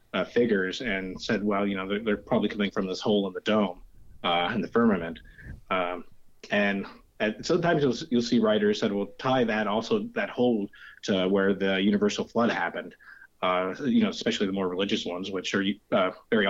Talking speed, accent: 195 wpm, American